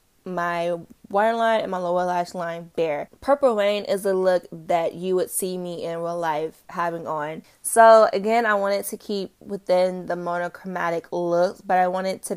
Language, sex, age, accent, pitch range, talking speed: English, female, 20-39, American, 170-195 Hz, 180 wpm